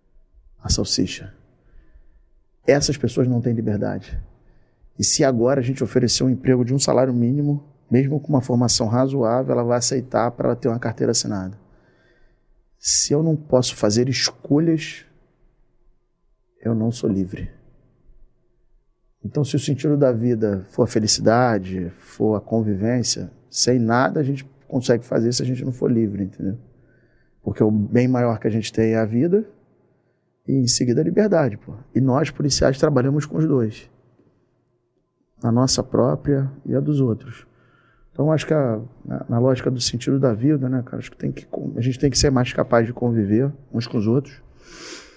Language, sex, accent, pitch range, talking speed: Portuguese, male, Brazilian, 110-130 Hz, 165 wpm